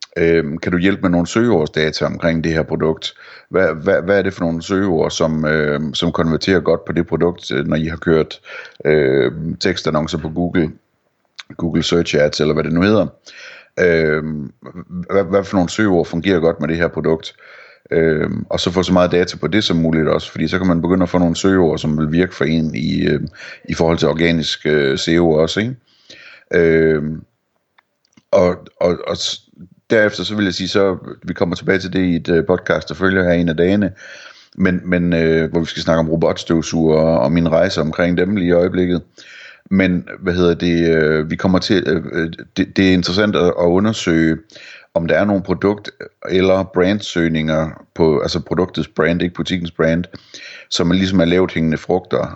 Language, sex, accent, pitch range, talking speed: Danish, male, native, 80-90 Hz, 195 wpm